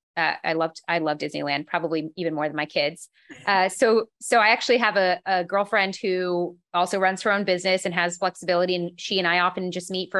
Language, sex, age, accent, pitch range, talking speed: English, female, 30-49, American, 175-205 Hz, 225 wpm